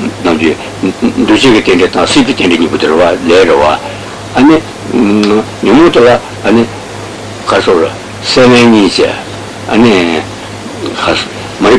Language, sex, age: Italian, male, 60-79